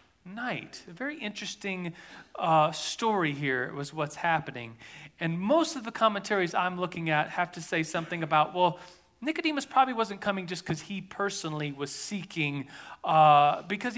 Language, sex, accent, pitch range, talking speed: English, male, American, 160-225 Hz, 155 wpm